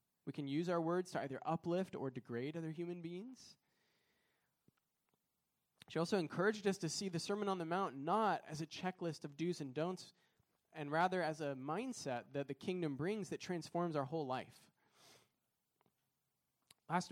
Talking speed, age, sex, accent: 165 wpm, 20-39, male, American